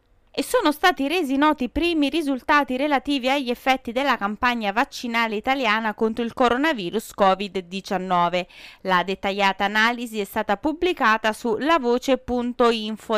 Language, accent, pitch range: Italian, native, 205-275 Hz